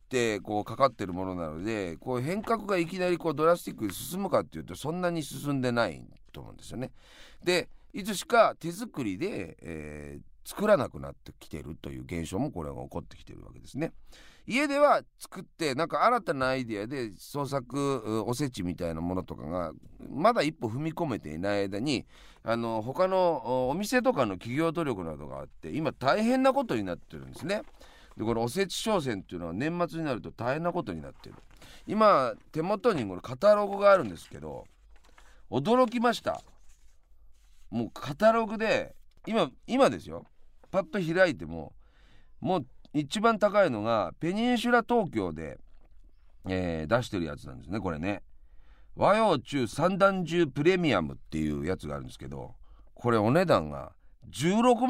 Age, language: 40-59, Japanese